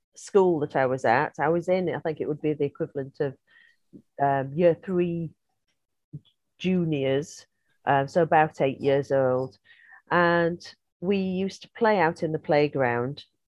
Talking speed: 155 wpm